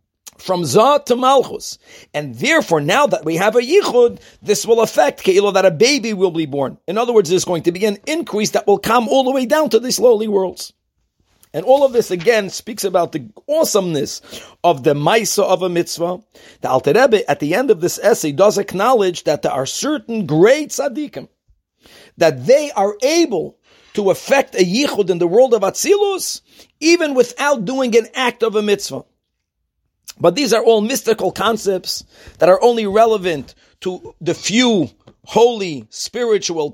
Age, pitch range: 50-69, 185-265 Hz